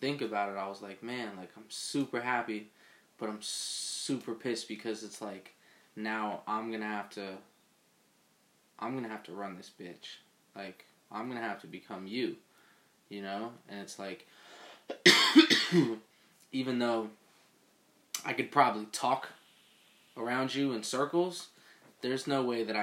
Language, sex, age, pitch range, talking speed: English, male, 20-39, 105-115 Hz, 145 wpm